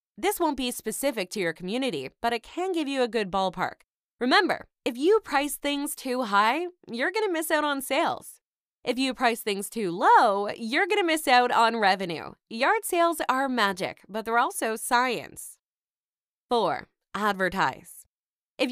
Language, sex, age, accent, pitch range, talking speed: English, female, 20-39, American, 195-270 Hz, 170 wpm